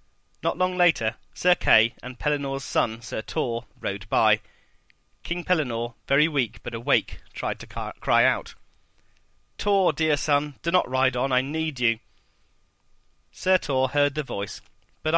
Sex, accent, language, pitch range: male, British, English, 110-145 Hz